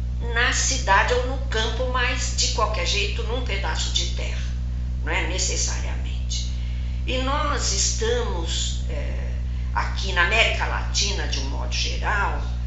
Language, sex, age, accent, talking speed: Portuguese, female, 50-69, Brazilian, 135 wpm